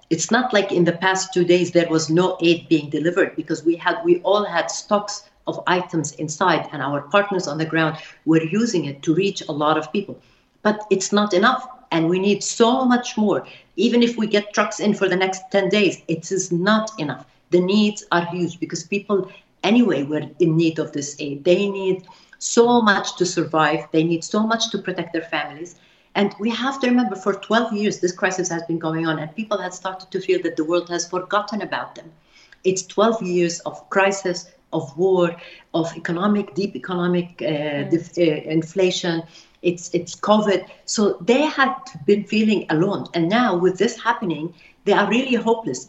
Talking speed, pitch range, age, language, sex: 195 wpm, 170-205 Hz, 50-69, English, female